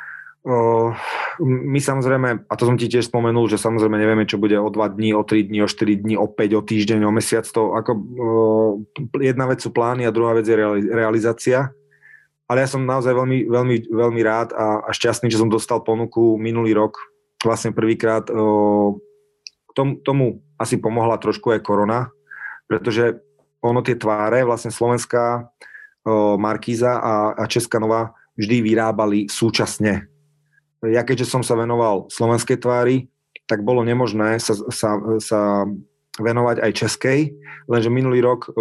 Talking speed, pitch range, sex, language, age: 160 wpm, 110-125 Hz, male, Slovak, 30-49